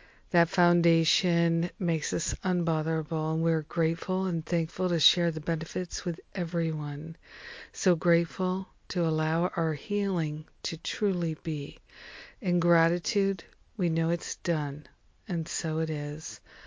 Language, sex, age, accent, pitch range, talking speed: English, female, 50-69, American, 155-180 Hz, 125 wpm